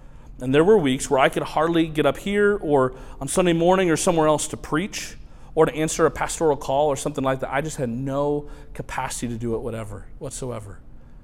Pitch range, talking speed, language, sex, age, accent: 120-155 Hz, 215 wpm, English, male, 40-59, American